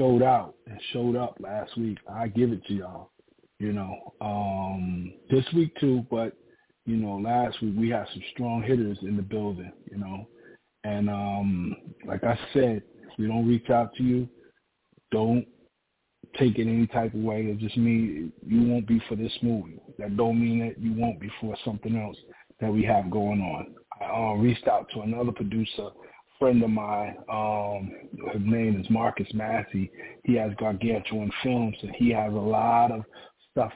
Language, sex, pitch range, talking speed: English, male, 105-120 Hz, 185 wpm